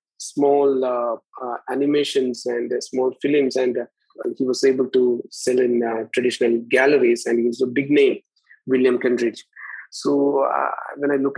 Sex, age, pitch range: male, 20-39, 125-145 Hz